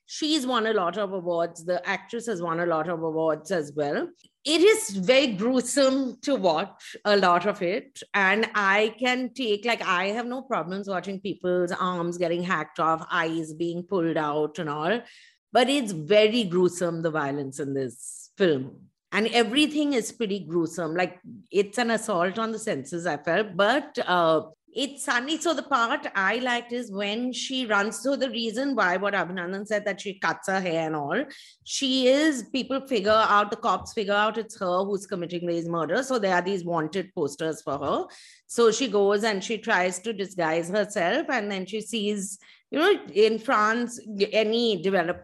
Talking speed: 185 wpm